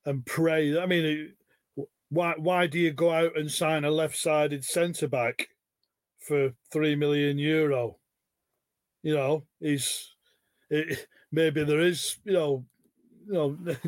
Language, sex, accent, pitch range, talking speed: English, male, British, 140-170 Hz, 125 wpm